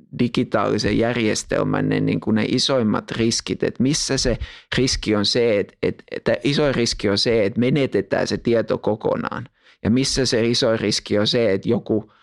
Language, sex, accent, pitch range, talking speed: Finnish, male, native, 110-125 Hz, 165 wpm